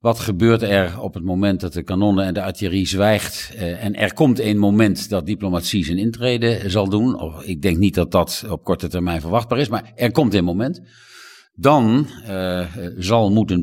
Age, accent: 50-69, Dutch